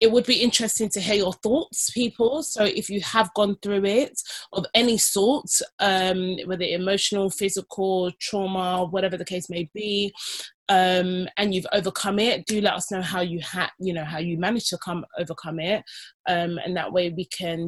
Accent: British